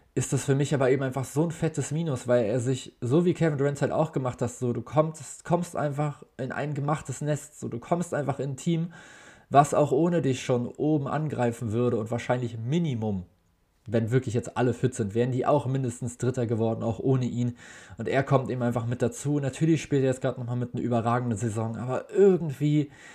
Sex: male